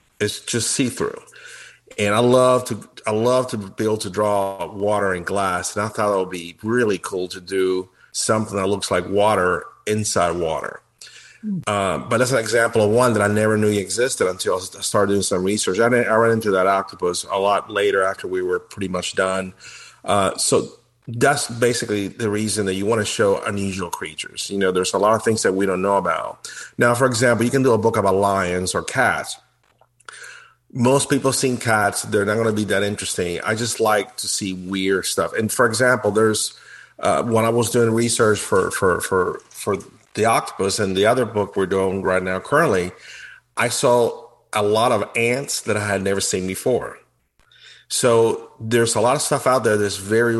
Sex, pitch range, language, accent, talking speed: male, 95-120 Hz, English, American, 200 wpm